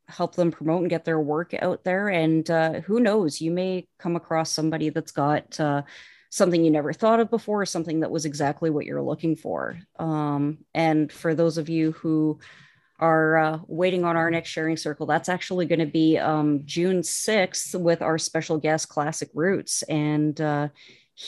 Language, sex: English, female